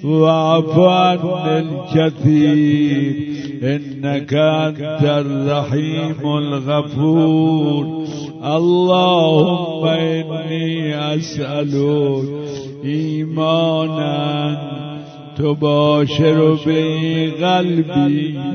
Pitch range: 150-175 Hz